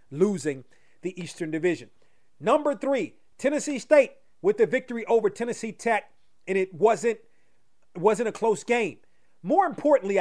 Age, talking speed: 30-49, 135 wpm